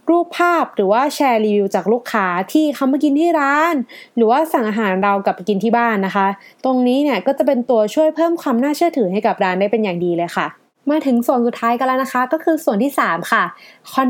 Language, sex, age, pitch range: Thai, female, 20-39, 210-290 Hz